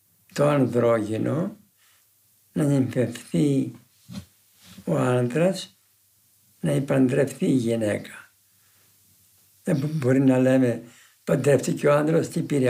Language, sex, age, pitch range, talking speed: Greek, male, 60-79, 110-180 Hz, 95 wpm